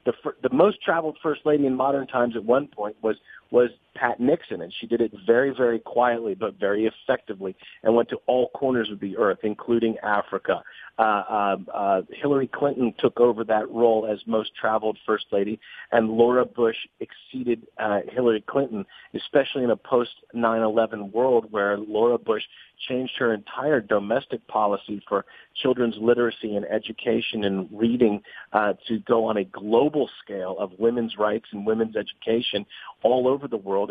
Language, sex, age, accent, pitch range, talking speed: English, male, 40-59, American, 100-120 Hz, 170 wpm